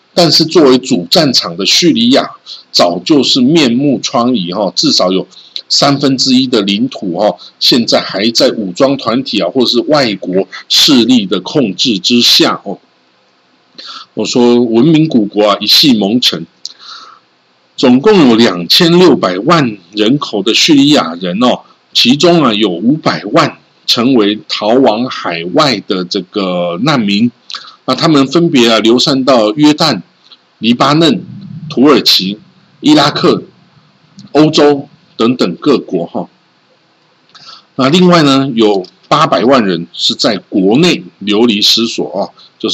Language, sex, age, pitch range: Chinese, male, 50-69, 105-165 Hz